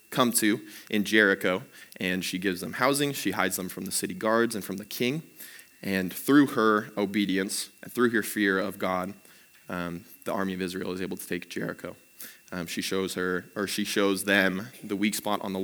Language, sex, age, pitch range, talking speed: English, male, 20-39, 95-110 Hz, 205 wpm